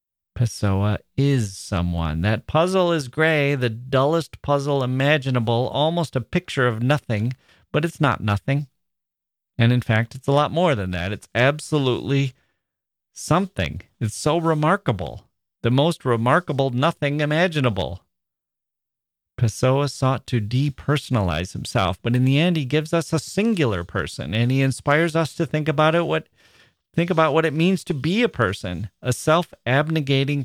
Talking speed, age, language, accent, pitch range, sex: 150 wpm, 40-59, English, American, 100-145 Hz, male